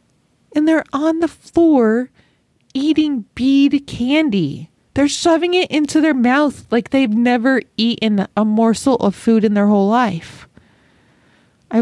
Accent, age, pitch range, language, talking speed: American, 30-49, 195-245 Hz, English, 135 wpm